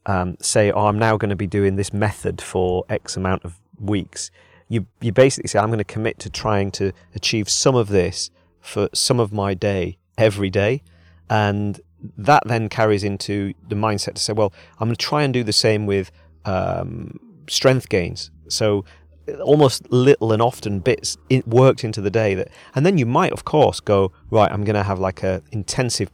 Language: English